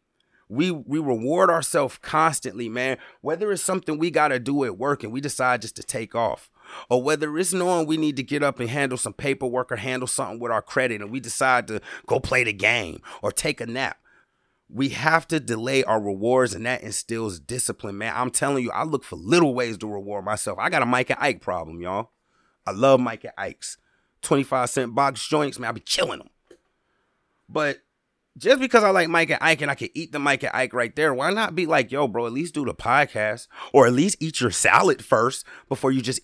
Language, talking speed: English, 225 wpm